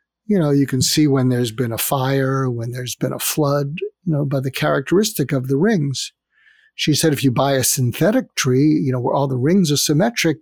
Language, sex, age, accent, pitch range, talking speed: English, male, 60-79, American, 135-170 Hz, 225 wpm